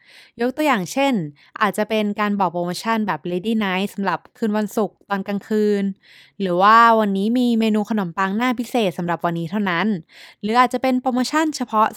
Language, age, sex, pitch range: Thai, 20-39, female, 175-225 Hz